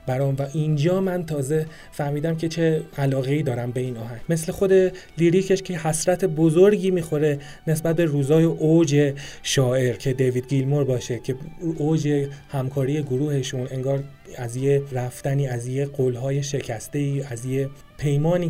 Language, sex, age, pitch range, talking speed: Persian, male, 30-49, 135-160 Hz, 145 wpm